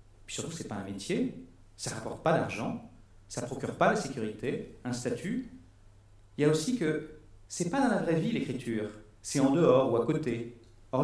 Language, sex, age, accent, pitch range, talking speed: French, male, 50-69, French, 100-130 Hz, 210 wpm